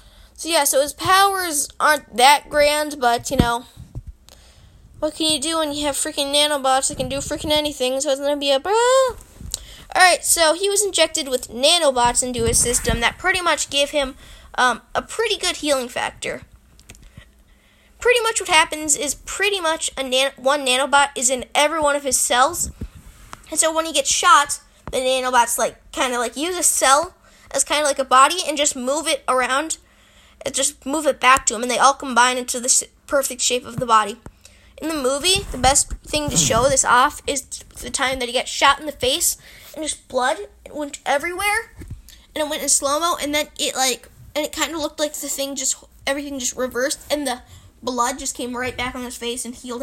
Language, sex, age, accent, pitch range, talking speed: English, female, 10-29, American, 255-315 Hz, 205 wpm